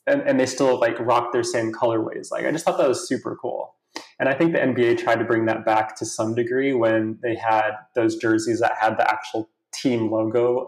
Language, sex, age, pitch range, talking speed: English, male, 20-39, 110-135 Hz, 230 wpm